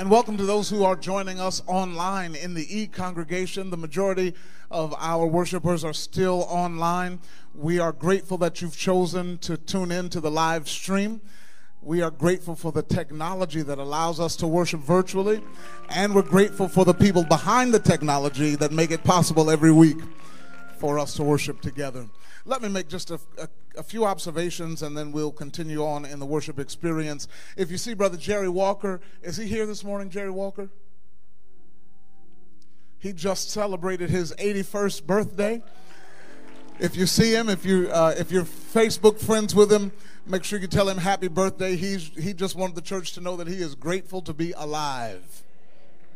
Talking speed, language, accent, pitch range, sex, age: 180 wpm, English, American, 160-195 Hz, male, 40-59